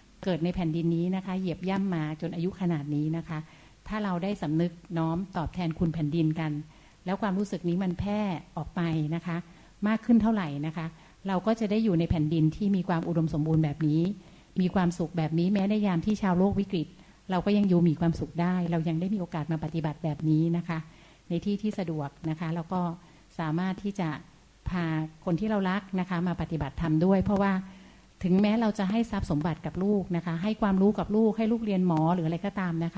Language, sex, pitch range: Thai, female, 165-200 Hz